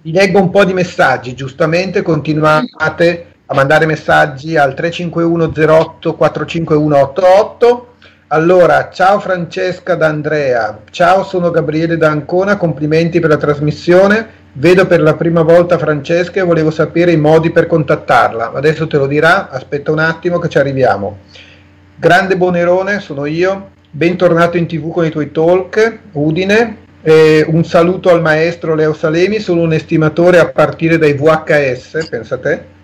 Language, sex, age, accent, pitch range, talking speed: Italian, male, 40-59, native, 150-180 Hz, 145 wpm